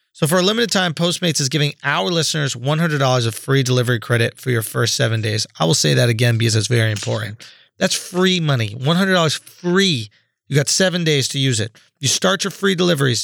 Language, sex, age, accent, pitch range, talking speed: English, male, 30-49, American, 125-175 Hz, 210 wpm